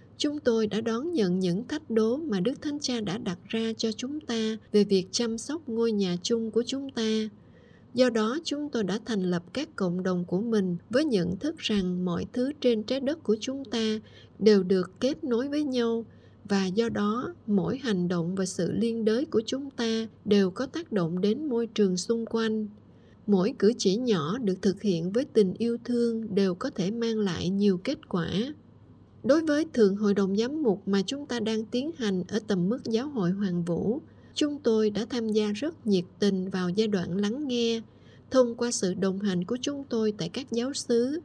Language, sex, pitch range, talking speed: Vietnamese, female, 195-240 Hz, 210 wpm